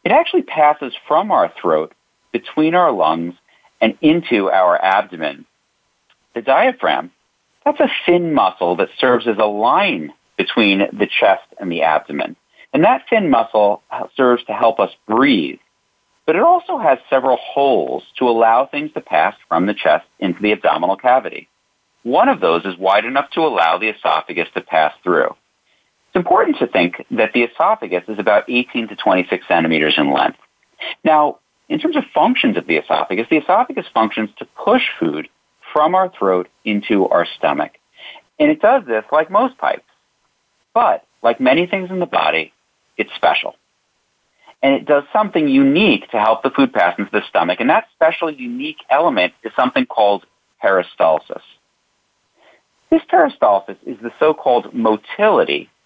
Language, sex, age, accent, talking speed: English, male, 40-59, American, 160 wpm